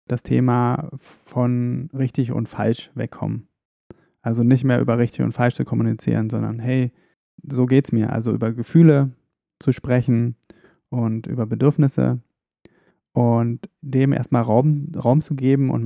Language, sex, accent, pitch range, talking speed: German, male, German, 115-135 Hz, 140 wpm